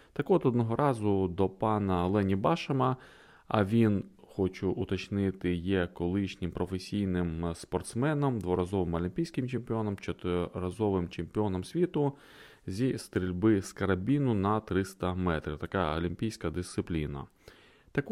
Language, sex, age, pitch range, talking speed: Ukrainian, male, 20-39, 90-125 Hz, 110 wpm